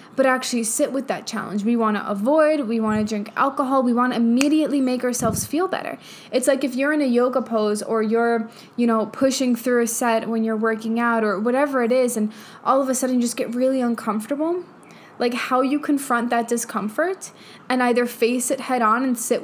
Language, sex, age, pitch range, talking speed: English, female, 10-29, 230-270 Hz, 220 wpm